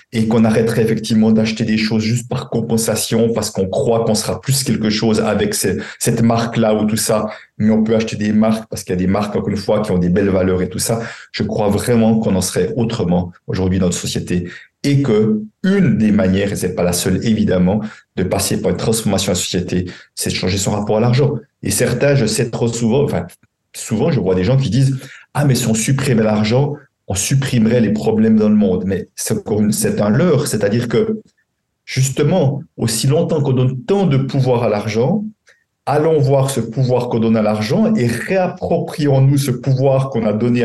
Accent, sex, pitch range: French, male, 110-145 Hz